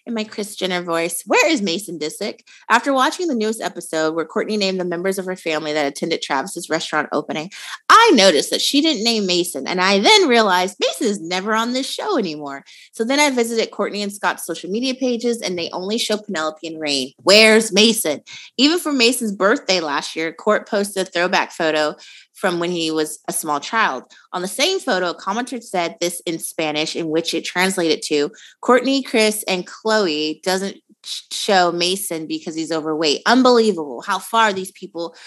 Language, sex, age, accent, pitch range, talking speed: English, female, 30-49, American, 175-240 Hz, 190 wpm